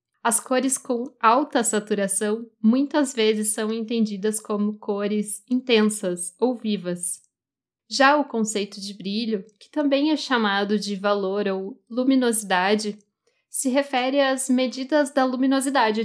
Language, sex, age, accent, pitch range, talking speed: Portuguese, female, 10-29, Brazilian, 210-255 Hz, 125 wpm